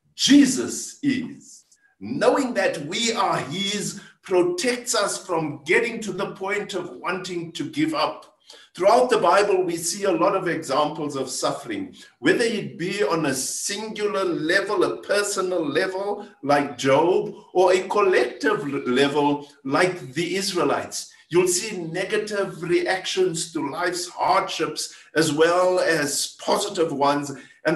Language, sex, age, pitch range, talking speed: English, male, 60-79, 160-205 Hz, 135 wpm